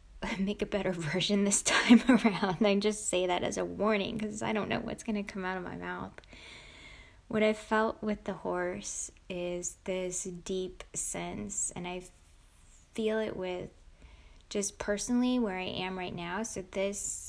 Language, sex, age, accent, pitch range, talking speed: English, female, 10-29, American, 185-235 Hz, 175 wpm